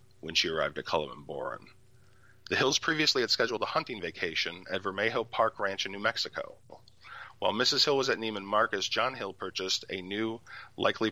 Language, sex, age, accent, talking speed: English, male, 40-59, American, 185 wpm